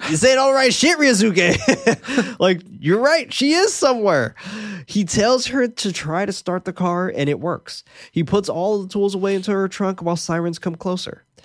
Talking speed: 195 wpm